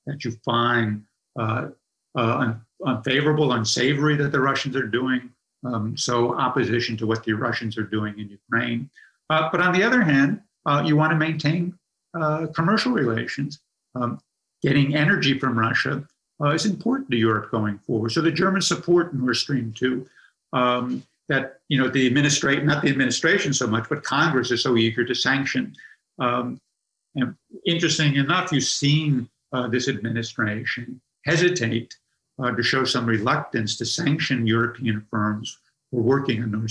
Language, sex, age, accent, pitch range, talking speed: English, male, 50-69, American, 115-140 Hz, 160 wpm